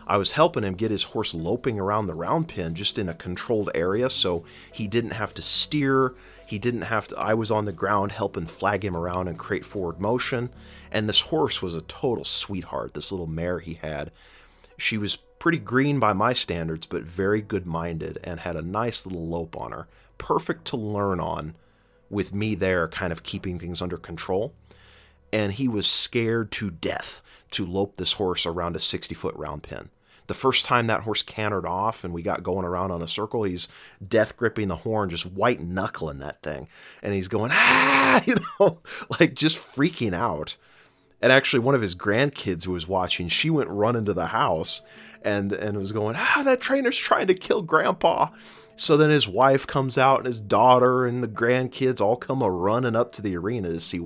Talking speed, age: 200 wpm, 30-49